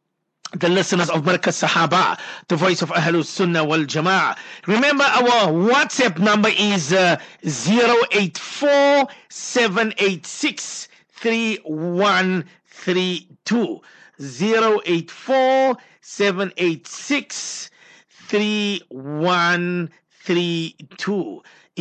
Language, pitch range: English, 165-210 Hz